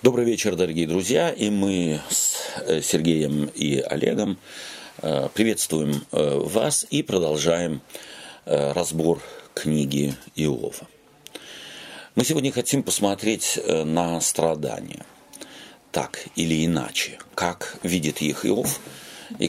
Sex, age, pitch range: male, 40-59, 75-100 Hz